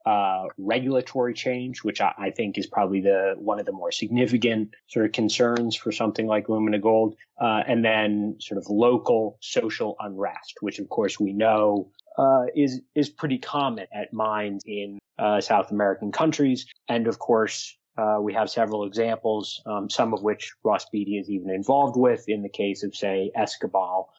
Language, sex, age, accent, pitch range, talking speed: English, male, 30-49, American, 105-130 Hz, 180 wpm